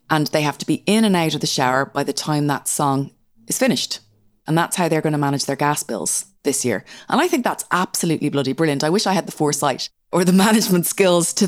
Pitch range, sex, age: 135-175 Hz, female, 30-49